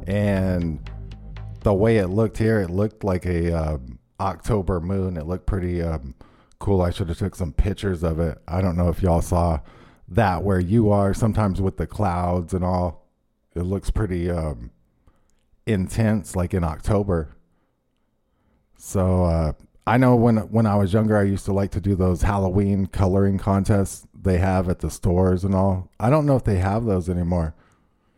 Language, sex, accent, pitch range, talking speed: English, male, American, 85-100 Hz, 180 wpm